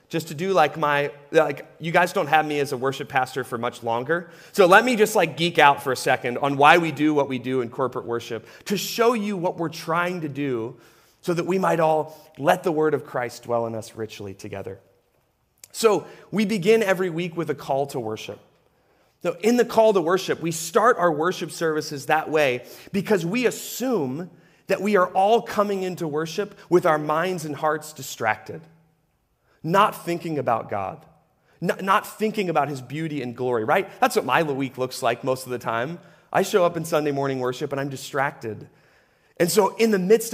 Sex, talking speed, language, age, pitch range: male, 205 wpm, English, 30-49, 130-185 Hz